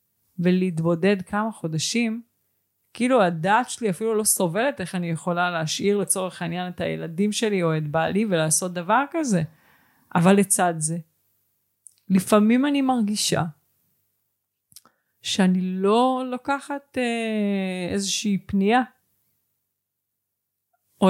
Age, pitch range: 30-49, 165-210 Hz